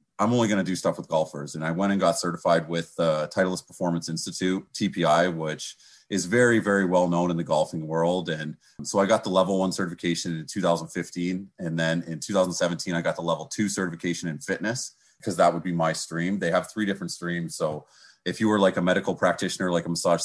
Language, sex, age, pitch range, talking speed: English, male, 30-49, 85-100 Hz, 220 wpm